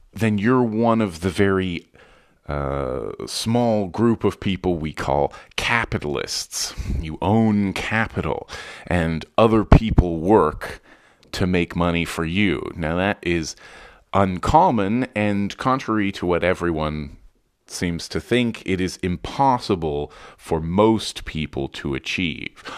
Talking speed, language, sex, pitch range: 120 wpm, English, male, 85-110 Hz